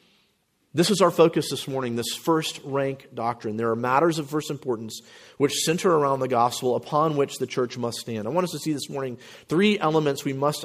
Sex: male